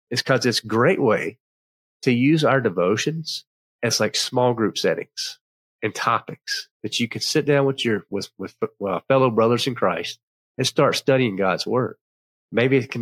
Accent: American